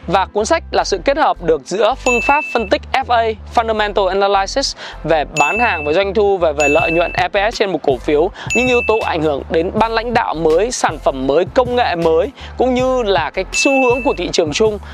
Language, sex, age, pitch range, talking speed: Vietnamese, male, 20-39, 195-250 Hz, 230 wpm